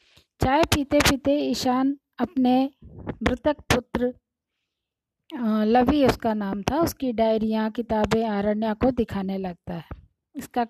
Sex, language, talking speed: female, Hindi, 110 wpm